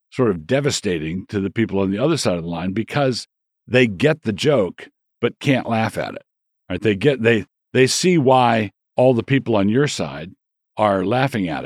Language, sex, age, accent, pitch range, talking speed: English, male, 50-69, American, 100-130 Hz, 205 wpm